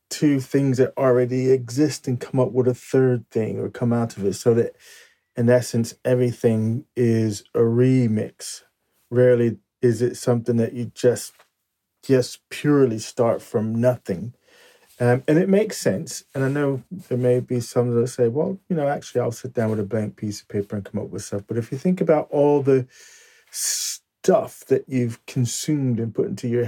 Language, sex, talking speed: English, male, 190 wpm